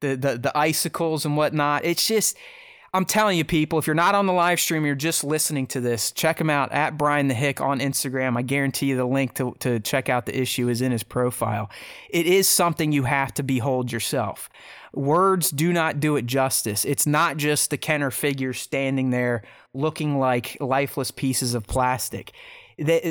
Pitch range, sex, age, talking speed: 130-160 Hz, male, 30-49, 200 wpm